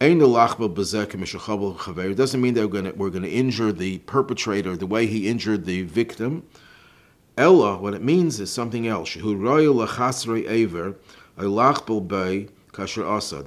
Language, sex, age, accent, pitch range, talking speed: English, male, 50-69, American, 105-140 Hz, 110 wpm